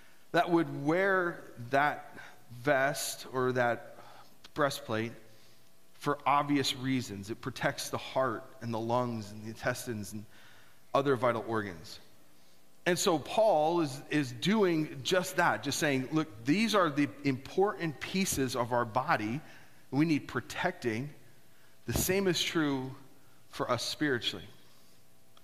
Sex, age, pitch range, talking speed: male, 40-59, 115-150 Hz, 125 wpm